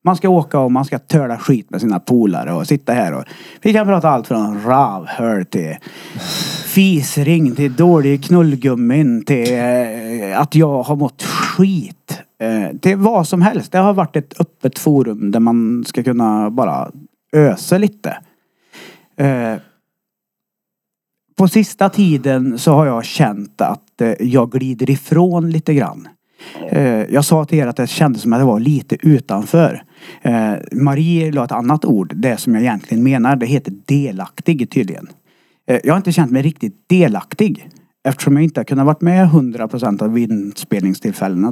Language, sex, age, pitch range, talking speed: Swedish, male, 30-49, 115-170 Hz, 160 wpm